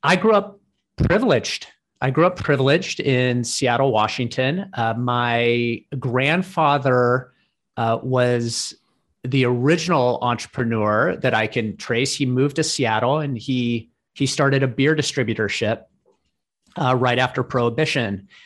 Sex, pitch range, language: male, 120-145 Hz, English